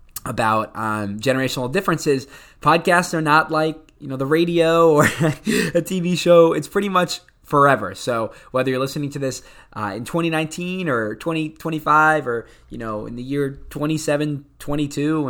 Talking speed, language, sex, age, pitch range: 150 wpm, English, male, 20-39, 120-160 Hz